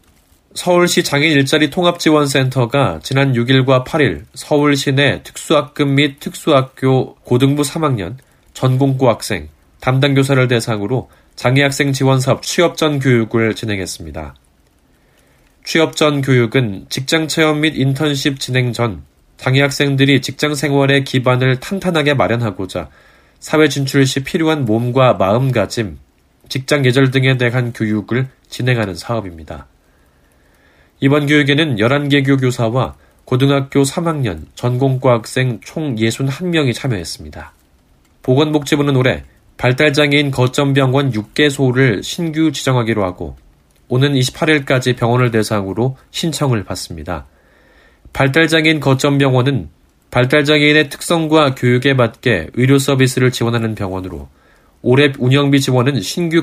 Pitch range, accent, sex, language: 110-145 Hz, native, male, Korean